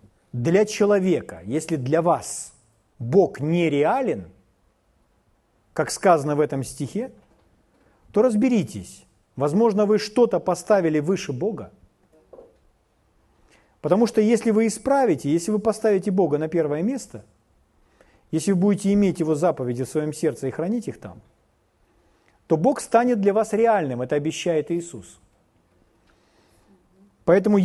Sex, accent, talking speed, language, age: male, native, 120 wpm, Russian, 40-59